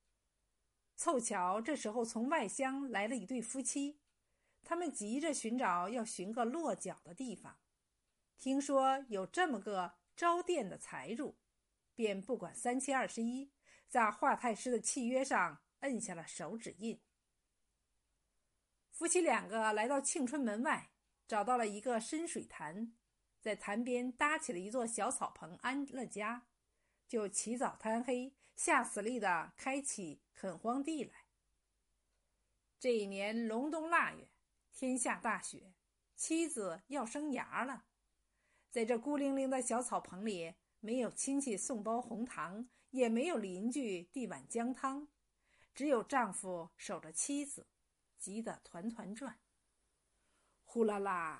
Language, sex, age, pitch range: Chinese, female, 50-69, 215-275 Hz